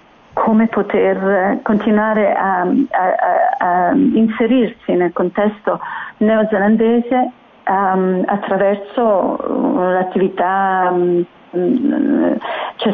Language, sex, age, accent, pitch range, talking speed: Italian, female, 40-59, native, 185-220 Hz, 75 wpm